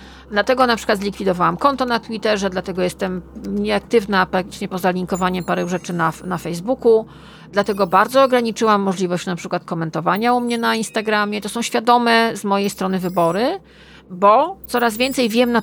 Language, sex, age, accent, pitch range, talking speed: Polish, female, 40-59, native, 190-235 Hz, 155 wpm